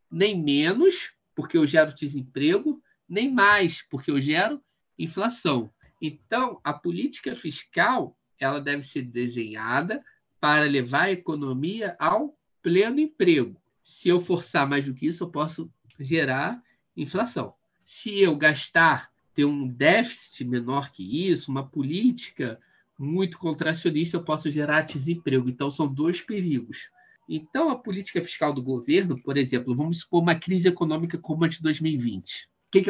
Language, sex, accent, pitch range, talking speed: Portuguese, male, Brazilian, 135-185 Hz, 140 wpm